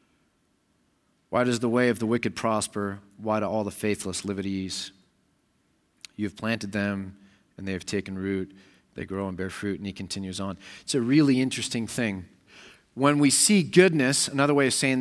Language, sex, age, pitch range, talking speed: English, male, 30-49, 115-170 Hz, 185 wpm